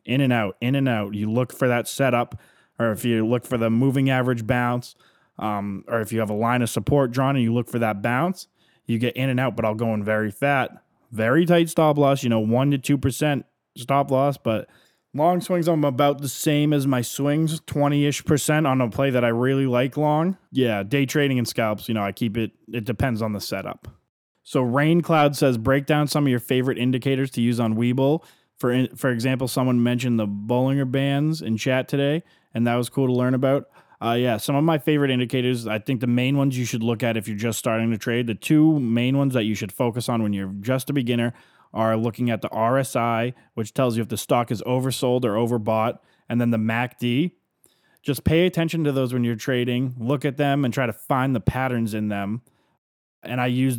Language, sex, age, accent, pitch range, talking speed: English, male, 20-39, American, 115-140 Hz, 225 wpm